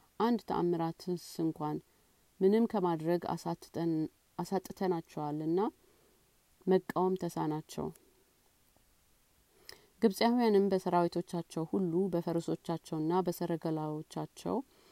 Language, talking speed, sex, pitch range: Amharic, 60 wpm, female, 165-190 Hz